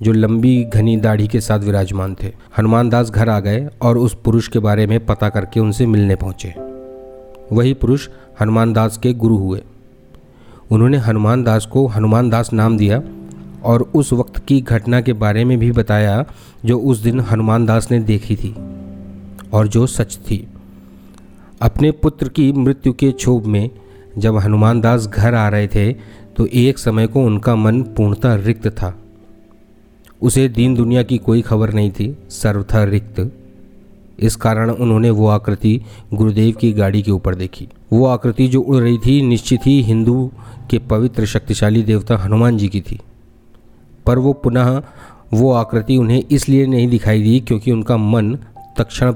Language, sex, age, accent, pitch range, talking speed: Hindi, male, 40-59, native, 105-120 Hz, 165 wpm